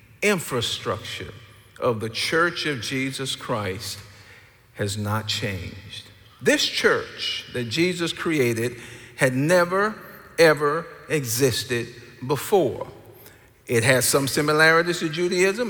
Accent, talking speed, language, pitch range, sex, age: American, 100 wpm, English, 125-175 Hz, male, 50-69